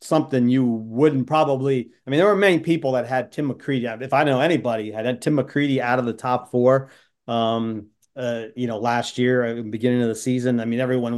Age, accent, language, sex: 40-59, American, English, male